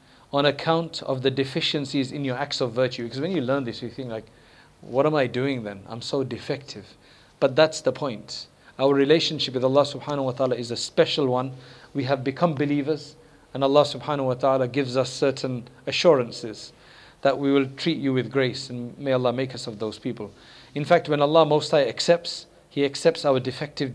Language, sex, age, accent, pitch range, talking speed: English, male, 40-59, South African, 125-150 Hz, 200 wpm